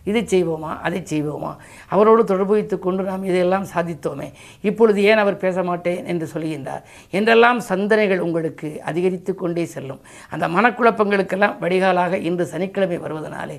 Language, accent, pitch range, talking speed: Tamil, native, 175-205 Hz, 130 wpm